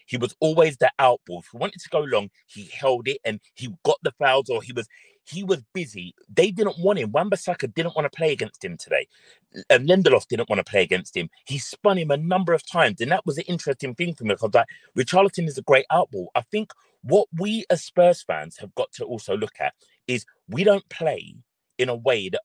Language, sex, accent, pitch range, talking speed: English, male, British, 130-190 Hz, 240 wpm